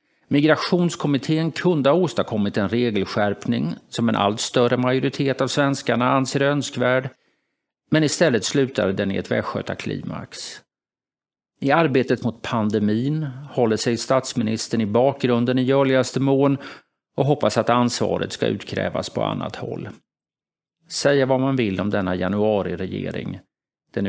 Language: Swedish